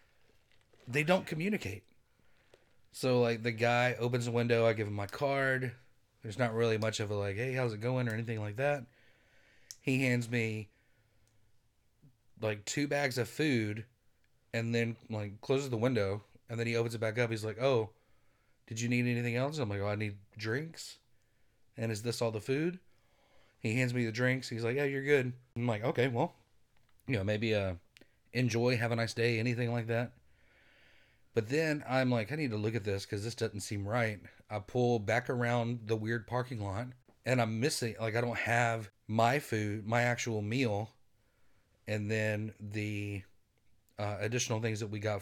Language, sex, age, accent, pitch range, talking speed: English, male, 30-49, American, 110-125 Hz, 185 wpm